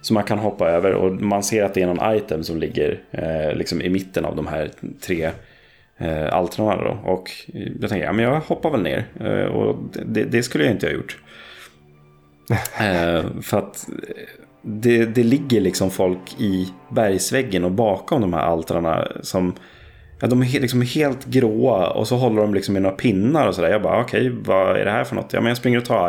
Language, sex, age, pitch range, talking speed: Swedish, male, 30-49, 90-115 Hz, 215 wpm